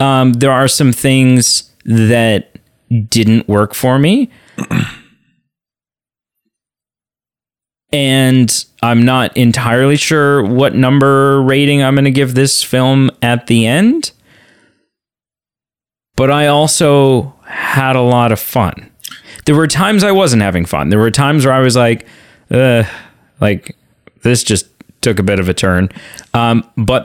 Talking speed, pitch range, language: 135 wpm, 105-135 Hz, English